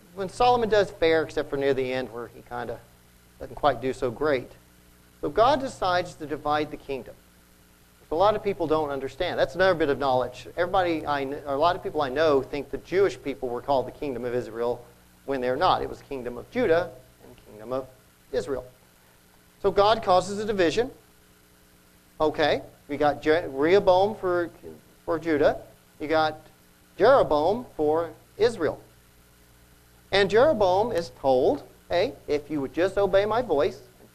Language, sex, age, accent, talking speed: English, male, 40-59, American, 175 wpm